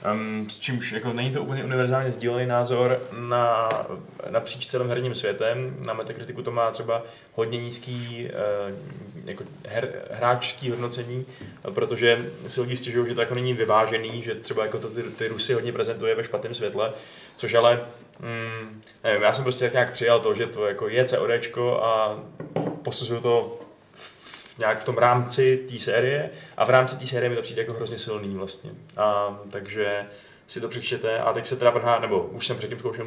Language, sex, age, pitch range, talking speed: Czech, male, 20-39, 110-125 Hz, 180 wpm